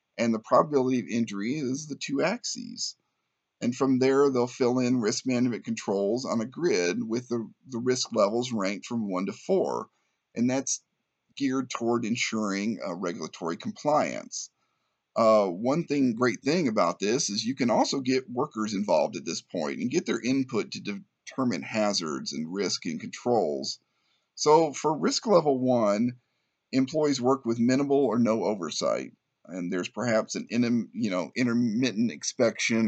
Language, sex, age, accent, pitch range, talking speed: English, male, 50-69, American, 110-140 Hz, 160 wpm